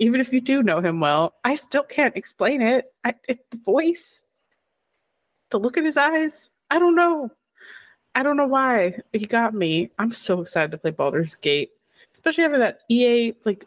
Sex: female